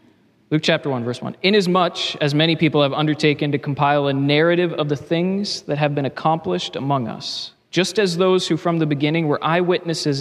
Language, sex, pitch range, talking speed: English, male, 140-170 Hz, 195 wpm